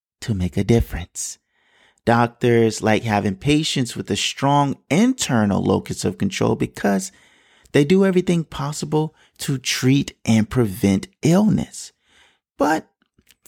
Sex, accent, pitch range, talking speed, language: male, American, 100-140 Hz, 115 wpm, English